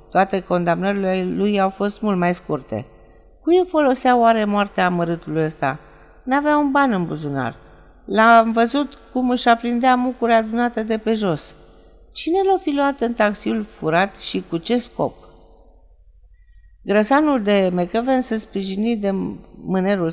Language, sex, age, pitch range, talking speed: Romanian, female, 50-69, 165-250 Hz, 140 wpm